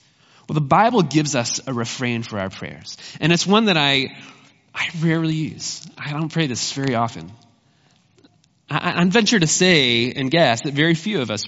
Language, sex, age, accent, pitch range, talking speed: English, male, 20-39, American, 130-165 Hz, 190 wpm